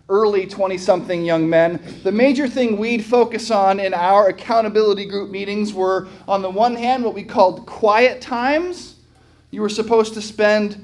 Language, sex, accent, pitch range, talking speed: English, male, American, 180-230 Hz, 165 wpm